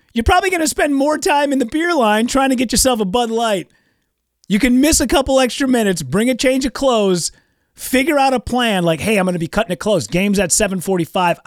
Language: English